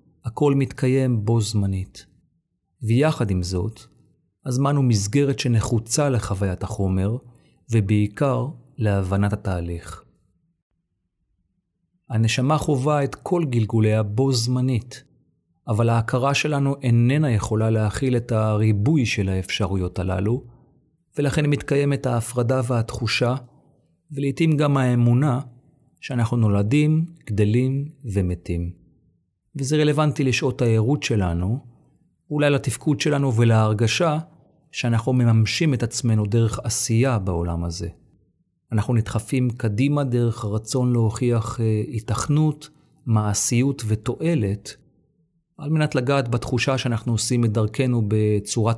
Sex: male